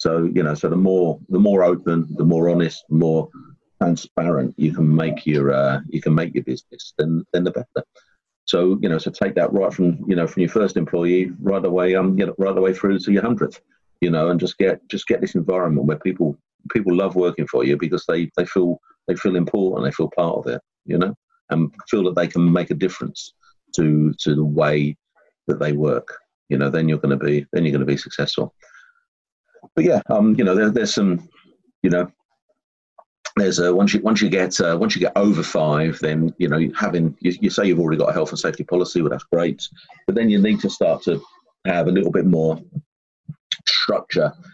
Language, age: English, 50-69